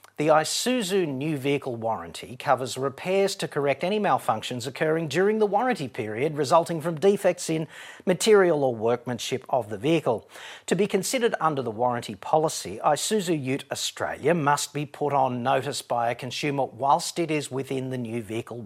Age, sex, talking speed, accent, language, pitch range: 40-59, male, 165 wpm, Australian, English, 125-175 Hz